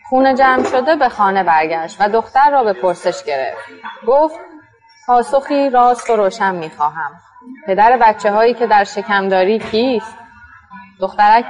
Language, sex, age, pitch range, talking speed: Persian, female, 30-49, 195-245 Hz, 135 wpm